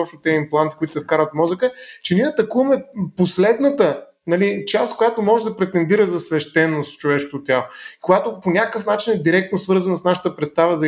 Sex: male